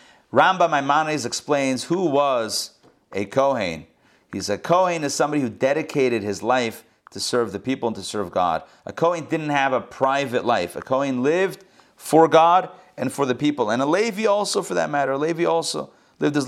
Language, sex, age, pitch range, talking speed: English, male, 30-49, 130-175 Hz, 185 wpm